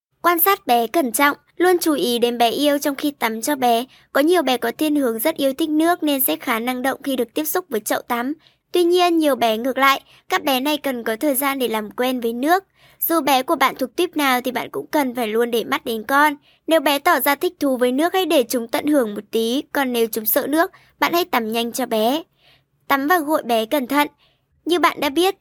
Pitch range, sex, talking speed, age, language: 245-305 Hz, male, 255 wpm, 20-39, Vietnamese